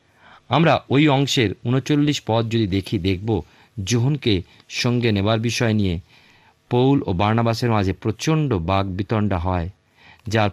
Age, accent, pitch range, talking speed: 50-69, native, 95-125 Hz, 105 wpm